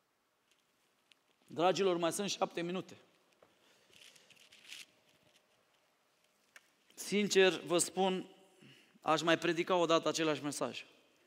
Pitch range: 145-175 Hz